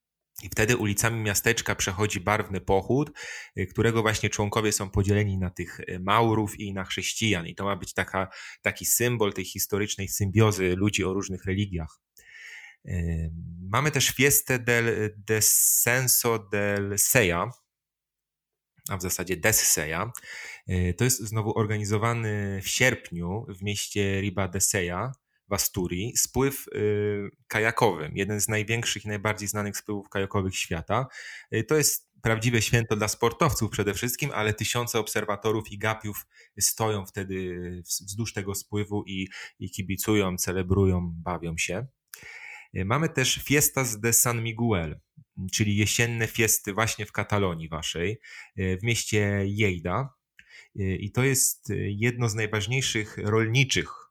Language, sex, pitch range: Polish, male, 95-115 Hz